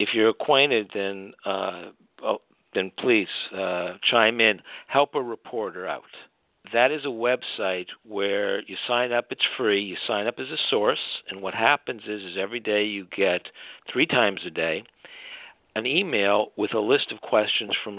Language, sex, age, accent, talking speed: English, male, 50-69, American, 175 wpm